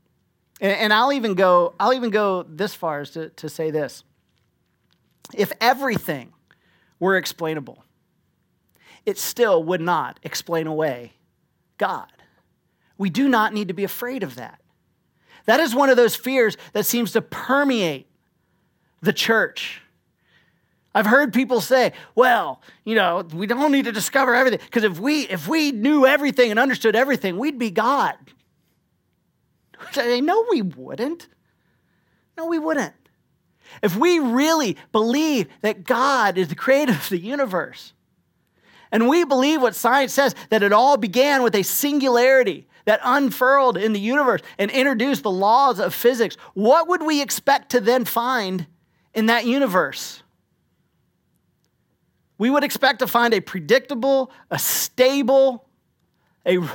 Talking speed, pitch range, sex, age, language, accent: 140 wpm, 200-275 Hz, male, 40-59, English, American